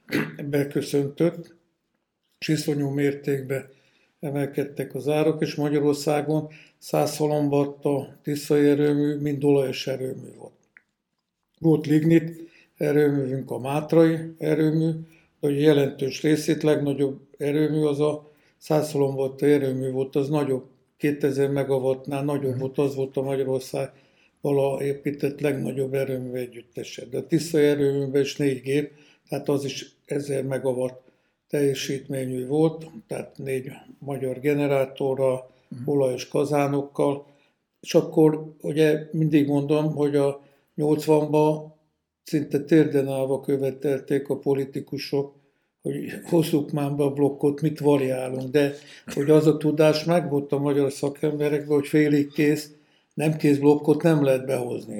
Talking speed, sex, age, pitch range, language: 115 wpm, male, 60-79, 140-150 Hz, Hungarian